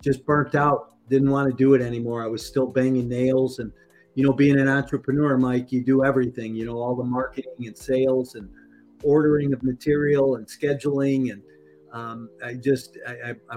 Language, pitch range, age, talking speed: English, 115-140 Hz, 50-69, 190 wpm